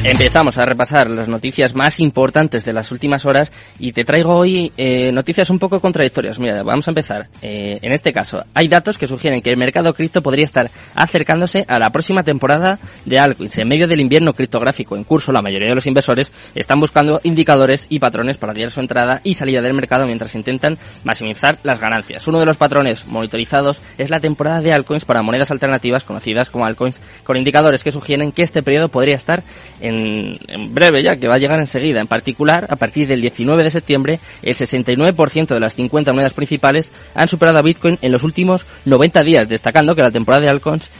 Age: 20-39